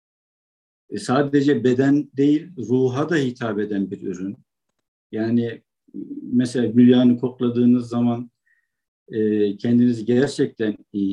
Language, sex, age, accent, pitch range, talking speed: Turkish, male, 50-69, native, 115-145 Hz, 95 wpm